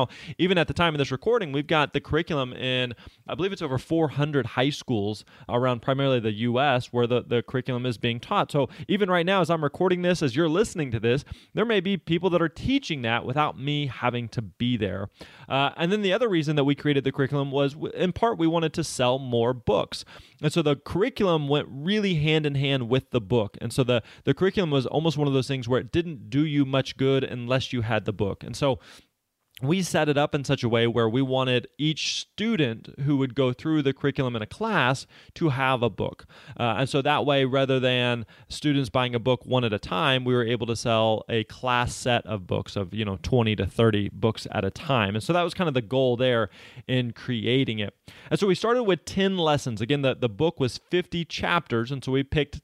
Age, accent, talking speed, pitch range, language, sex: 20-39, American, 235 wpm, 120-150 Hz, English, male